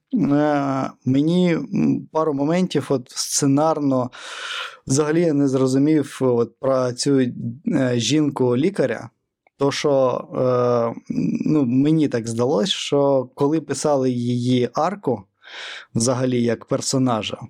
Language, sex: Ukrainian, male